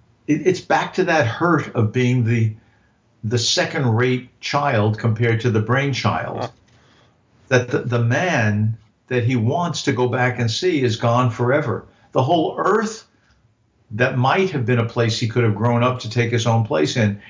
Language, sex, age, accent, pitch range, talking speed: English, male, 50-69, American, 110-125 Hz, 175 wpm